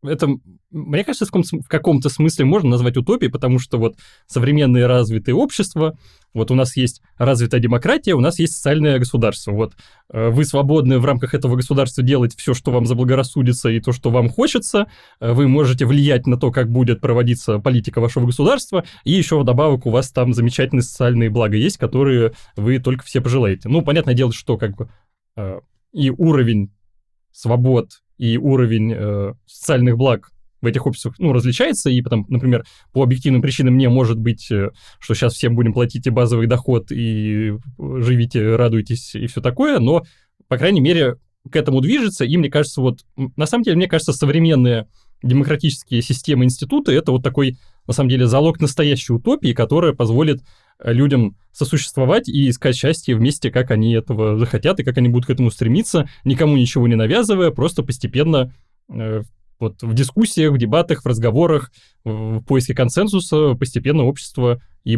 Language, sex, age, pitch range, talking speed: Russian, male, 20-39, 120-145 Hz, 165 wpm